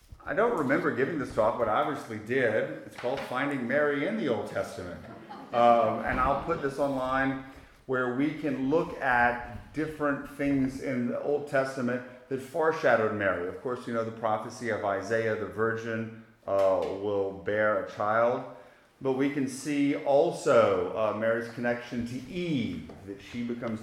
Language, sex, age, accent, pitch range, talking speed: English, male, 40-59, American, 110-135 Hz, 165 wpm